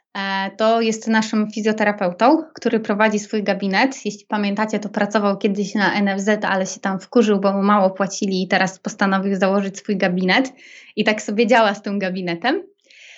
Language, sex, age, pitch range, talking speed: Polish, female, 20-39, 195-240 Hz, 165 wpm